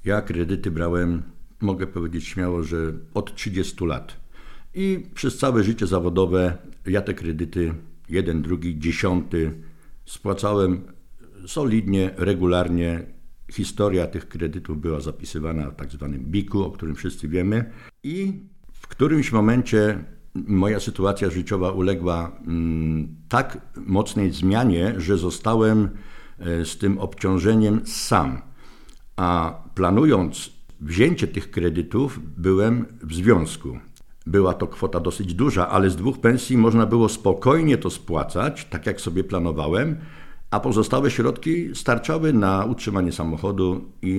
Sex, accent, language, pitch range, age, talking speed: male, native, Polish, 85-110 Hz, 60-79, 120 wpm